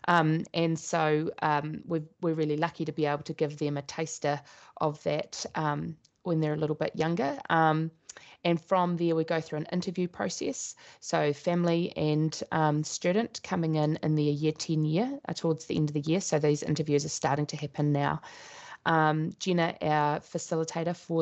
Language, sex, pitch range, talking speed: English, female, 145-165 Hz, 185 wpm